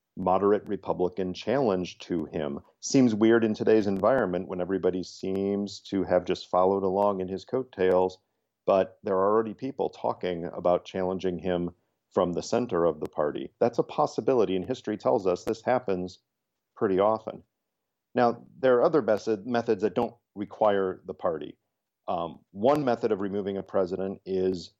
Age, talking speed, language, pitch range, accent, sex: 40-59, 155 wpm, English, 95-110 Hz, American, male